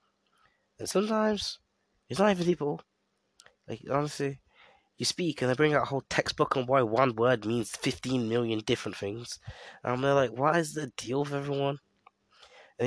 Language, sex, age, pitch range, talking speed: English, male, 20-39, 110-155 Hz, 170 wpm